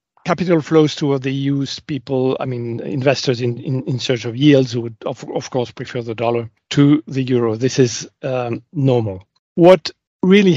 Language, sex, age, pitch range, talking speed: English, male, 40-59, 120-145 Hz, 175 wpm